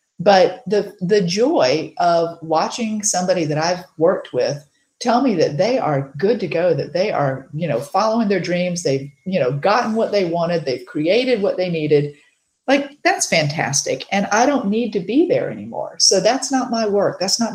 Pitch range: 155-225 Hz